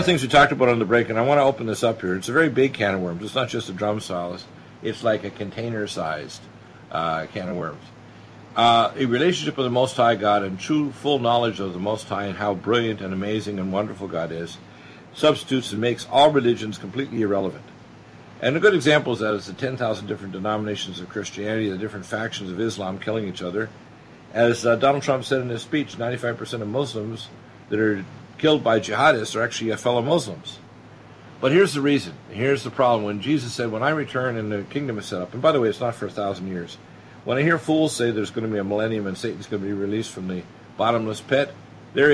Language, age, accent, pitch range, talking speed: English, 50-69, American, 100-130 Hz, 230 wpm